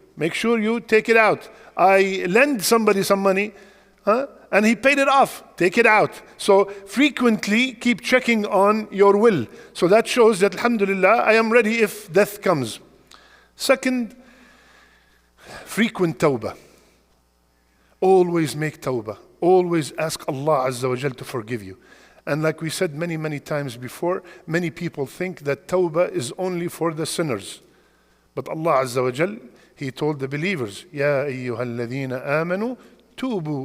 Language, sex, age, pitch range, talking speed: English, male, 50-69, 145-215 Hz, 150 wpm